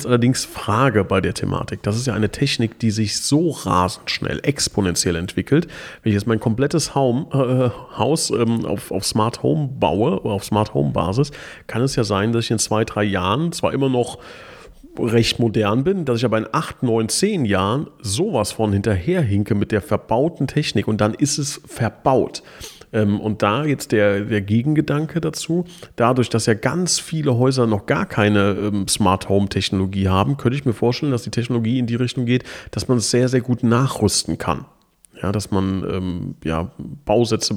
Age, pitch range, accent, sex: 40-59, 105-130 Hz, German, male